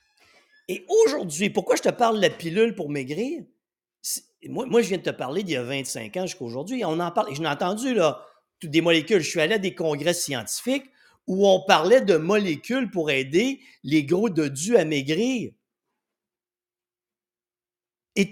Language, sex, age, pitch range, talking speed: French, male, 50-69, 160-240 Hz, 185 wpm